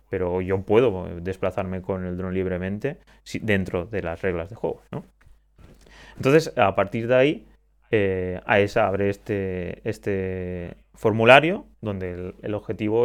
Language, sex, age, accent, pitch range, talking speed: Spanish, male, 30-49, Spanish, 95-110 Hz, 145 wpm